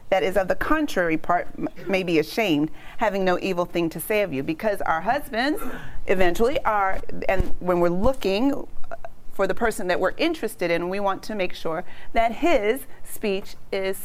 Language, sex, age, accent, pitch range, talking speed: English, female, 40-59, American, 185-270 Hz, 180 wpm